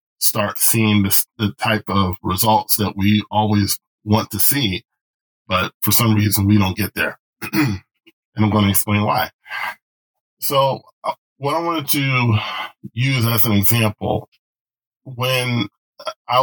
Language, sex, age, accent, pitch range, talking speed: English, male, 10-29, American, 100-110 Hz, 135 wpm